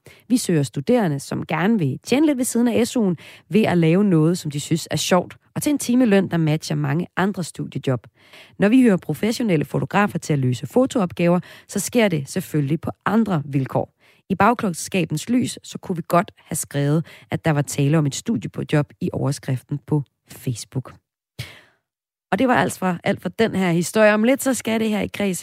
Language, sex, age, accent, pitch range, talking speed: Danish, female, 30-49, native, 145-200 Hz, 200 wpm